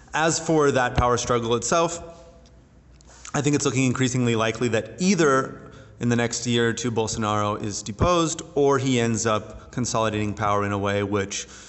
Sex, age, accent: male, 30-49, American